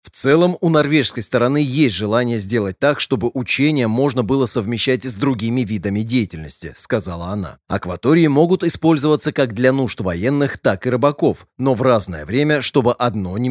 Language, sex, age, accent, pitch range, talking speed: Russian, male, 30-49, native, 110-140 Hz, 170 wpm